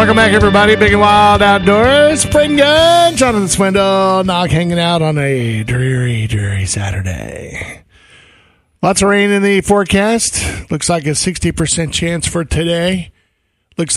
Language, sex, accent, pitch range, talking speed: English, male, American, 155-195 Hz, 145 wpm